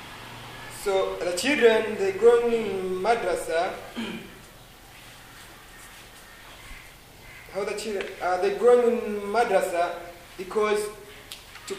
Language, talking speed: English, 85 wpm